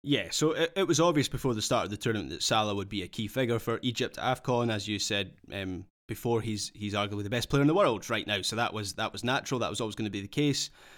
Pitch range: 105-130 Hz